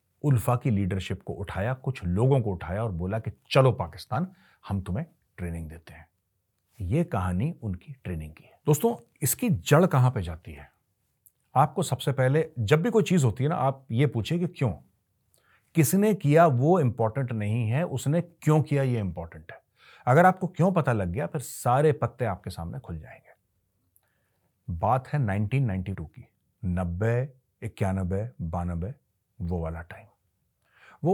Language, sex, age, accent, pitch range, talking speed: Hindi, male, 40-59, native, 95-135 Hz, 160 wpm